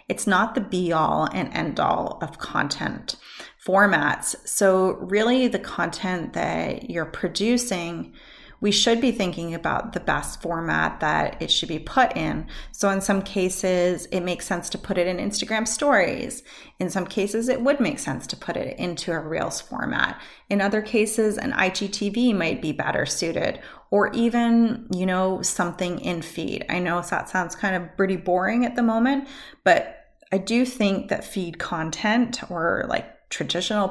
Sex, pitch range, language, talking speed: female, 175-225 Hz, English, 165 wpm